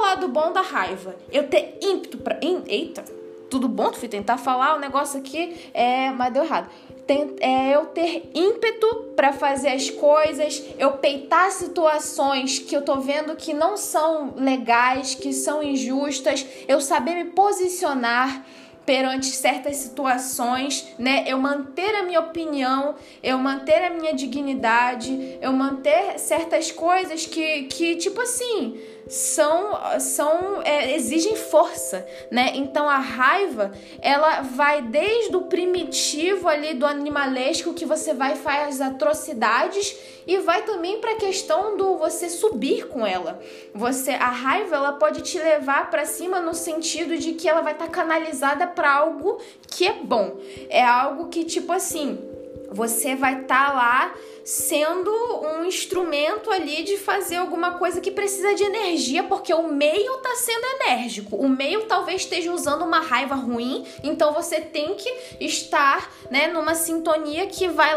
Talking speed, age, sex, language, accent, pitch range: 150 wpm, 10-29, female, Portuguese, Brazilian, 270-350 Hz